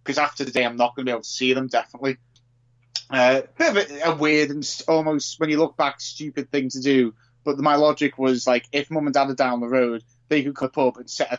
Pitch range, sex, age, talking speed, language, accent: 125-160 Hz, male, 30-49, 275 wpm, English, British